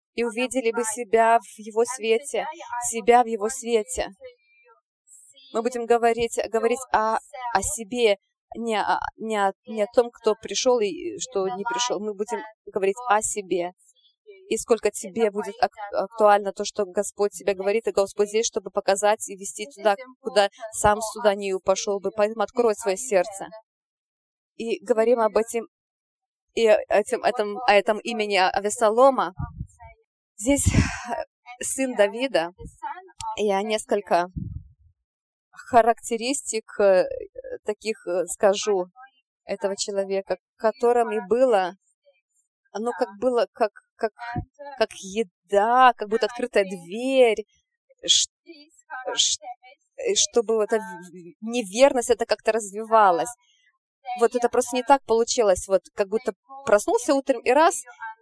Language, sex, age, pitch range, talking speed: English, female, 20-39, 205-250 Hz, 125 wpm